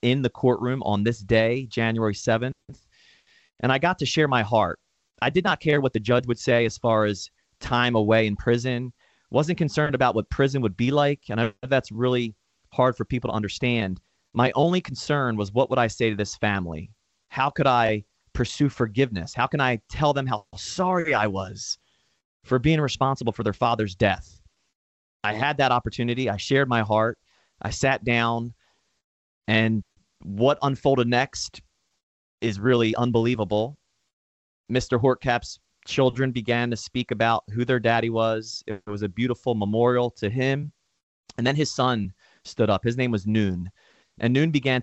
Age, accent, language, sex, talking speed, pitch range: 30-49, American, English, male, 175 wpm, 105-130 Hz